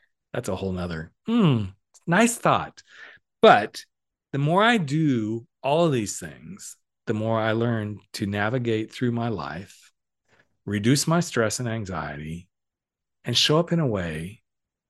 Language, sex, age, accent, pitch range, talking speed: English, male, 40-59, American, 105-155 Hz, 145 wpm